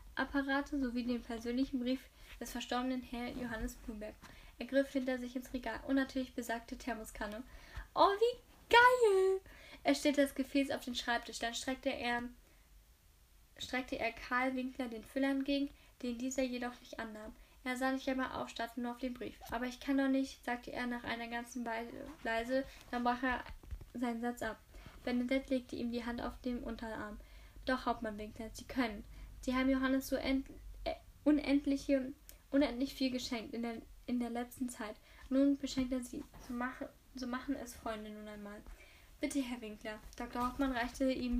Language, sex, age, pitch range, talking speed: German, female, 10-29, 235-270 Hz, 170 wpm